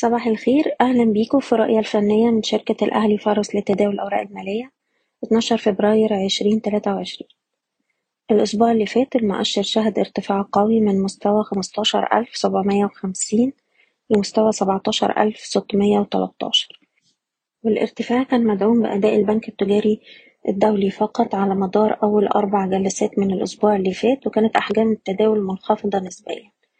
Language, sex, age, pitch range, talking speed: Arabic, female, 20-39, 200-225 Hz, 130 wpm